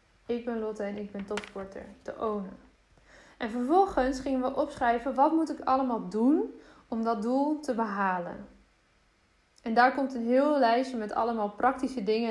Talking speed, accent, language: 165 wpm, Dutch, Dutch